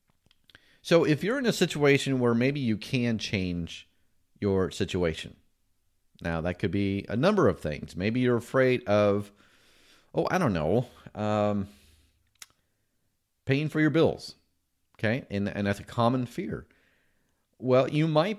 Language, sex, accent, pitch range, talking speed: English, male, American, 90-140 Hz, 145 wpm